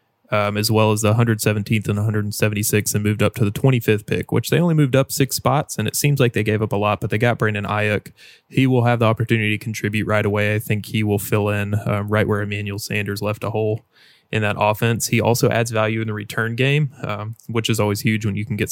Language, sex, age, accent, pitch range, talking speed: English, male, 20-39, American, 105-120 Hz, 255 wpm